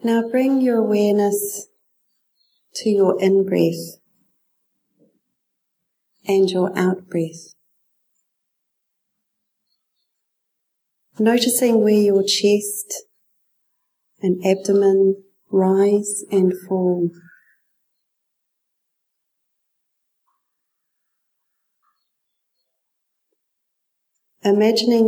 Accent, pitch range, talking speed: Australian, 180-210 Hz, 50 wpm